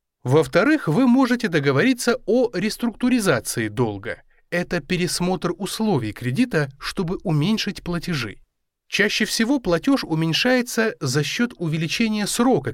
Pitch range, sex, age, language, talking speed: 125-210 Hz, male, 20-39, Russian, 105 wpm